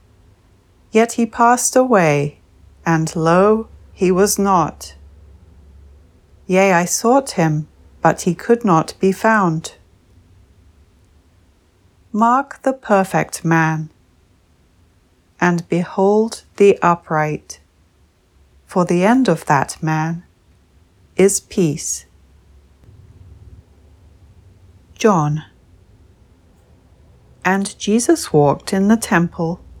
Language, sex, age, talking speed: English, female, 40-59, 85 wpm